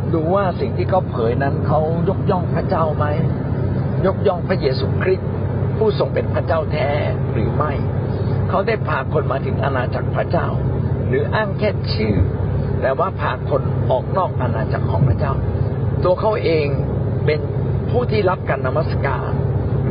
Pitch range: 120-135 Hz